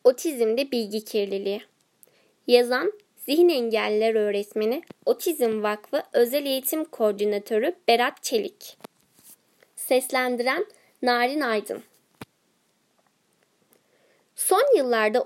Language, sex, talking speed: Turkish, female, 75 wpm